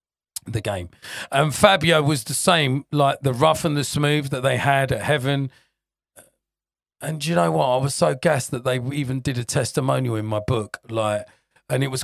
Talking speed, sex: 195 wpm, male